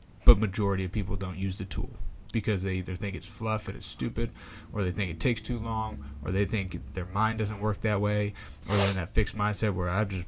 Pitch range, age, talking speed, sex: 95-105 Hz, 20-39, 245 wpm, male